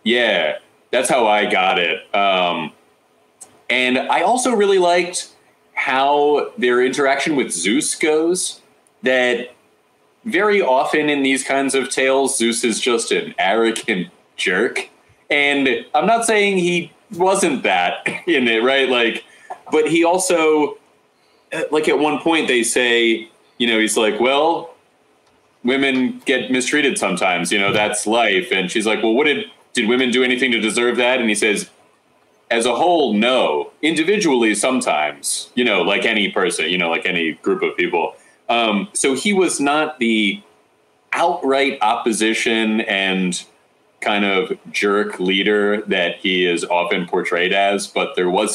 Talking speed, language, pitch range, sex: 150 wpm, English, 110-170 Hz, male